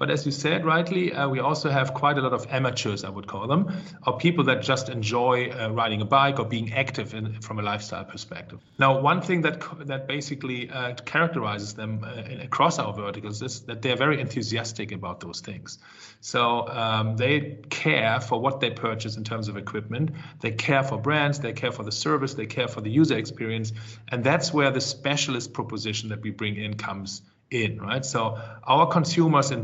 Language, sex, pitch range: English, male, 110-140 Hz